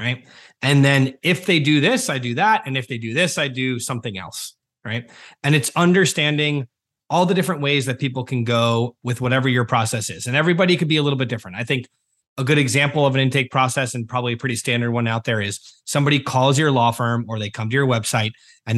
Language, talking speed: English, 235 wpm